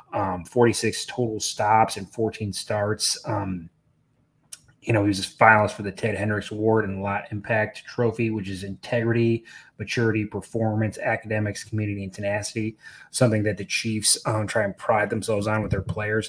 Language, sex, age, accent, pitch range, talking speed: English, male, 20-39, American, 95-110 Hz, 165 wpm